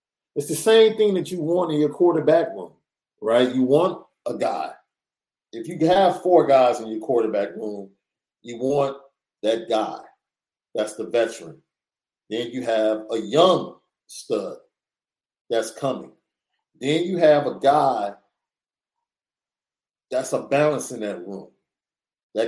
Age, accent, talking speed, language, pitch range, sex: 50-69, American, 140 wpm, English, 120-165 Hz, male